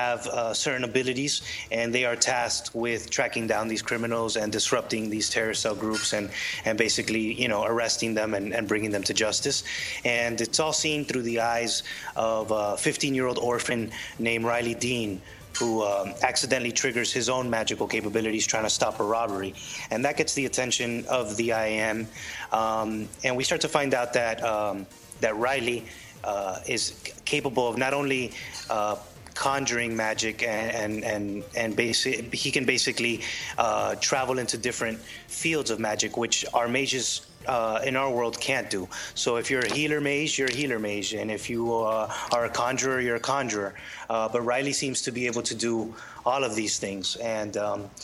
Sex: male